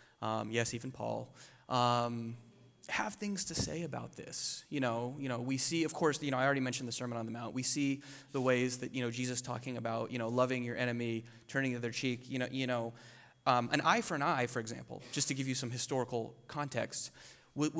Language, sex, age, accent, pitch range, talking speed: English, male, 30-49, American, 120-145 Hz, 225 wpm